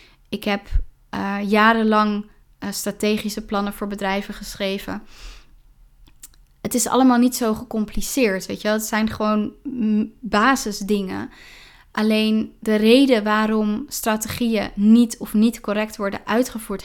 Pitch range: 200-225 Hz